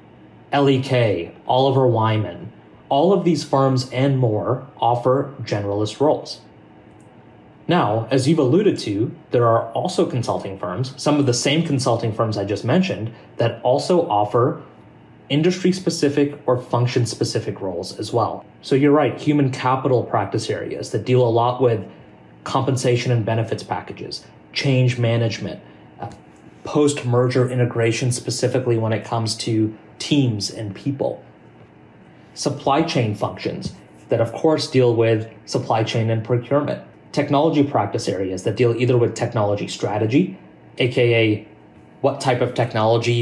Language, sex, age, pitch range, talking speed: English, male, 30-49, 110-135 Hz, 135 wpm